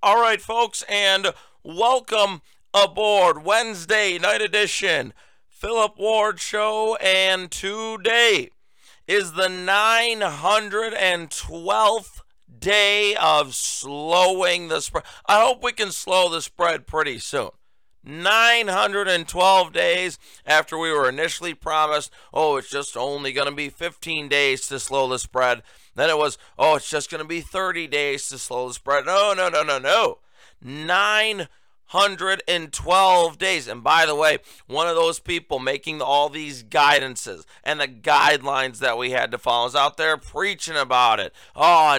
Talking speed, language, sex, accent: 145 wpm, English, male, American